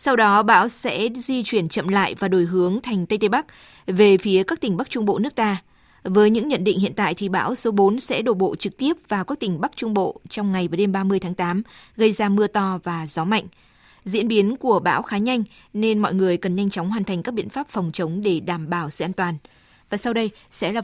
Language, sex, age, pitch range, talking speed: Vietnamese, female, 20-39, 185-215 Hz, 255 wpm